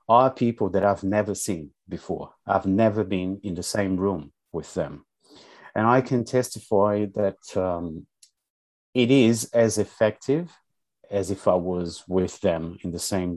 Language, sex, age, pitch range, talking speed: English, male, 30-49, 95-115 Hz, 155 wpm